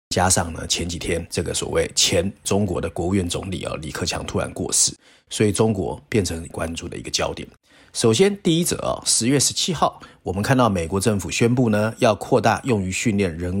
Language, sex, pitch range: Chinese, male, 95-125 Hz